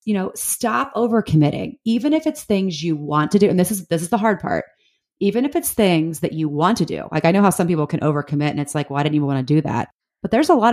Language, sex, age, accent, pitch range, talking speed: English, female, 30-49, American, 150-185 Hz, 290 wpm